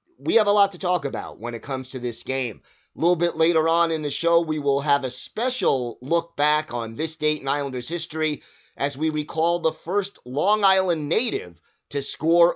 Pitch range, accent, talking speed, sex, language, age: 125-170 Hz, American, 210 wpm, male, English, 30-49